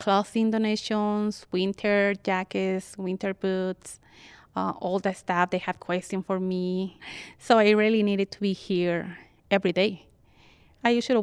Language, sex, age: English, female, 20-39